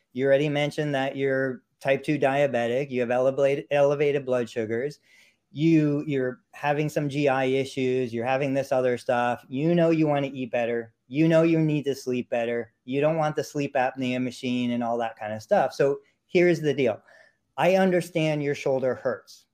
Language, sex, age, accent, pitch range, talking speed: English, male, 40-59, American, 130-160 Hz, 185 wpm